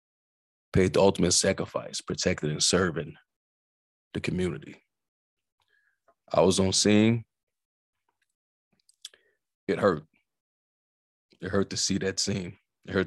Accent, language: American, English